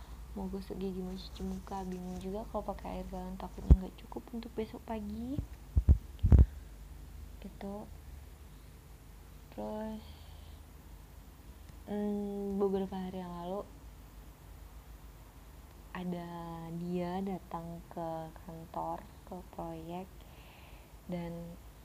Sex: female